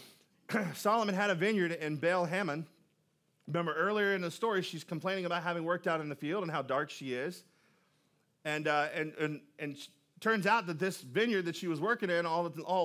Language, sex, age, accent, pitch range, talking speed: English, male, 40-59, American, 155-205 Hz, 200 wpm